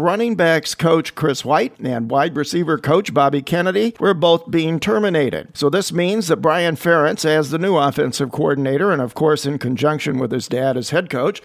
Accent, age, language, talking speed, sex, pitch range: American, 50-69, English, 195 wpm, male, 145-180 Hz